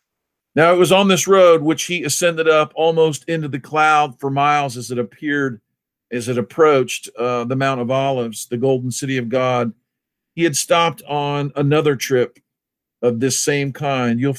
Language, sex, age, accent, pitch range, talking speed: English, male, 50-69, American, 120-145 Hz, 180 wpm